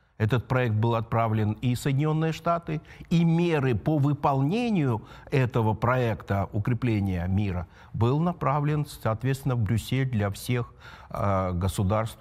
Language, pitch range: Russian, 105-140 Hz